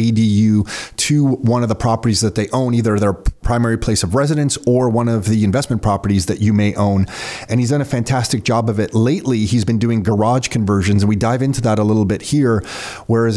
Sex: male